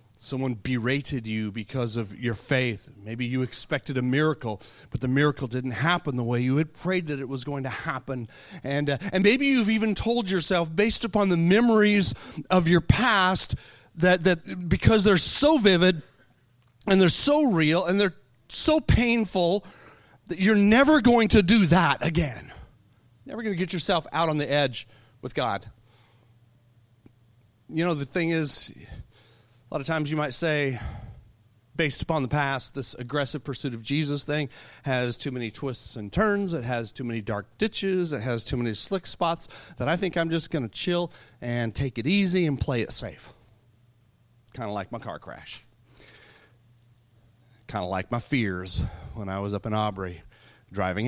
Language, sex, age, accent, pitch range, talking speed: English, male, 30-49, American, 115-170 Hz, 175 wpm